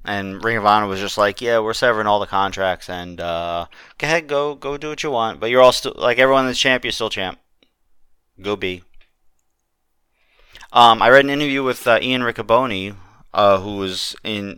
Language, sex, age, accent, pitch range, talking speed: English, male, 30-49, American, 95-115 Hz, 200 wpm